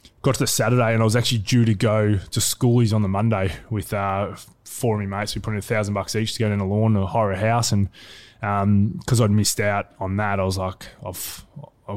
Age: 20-39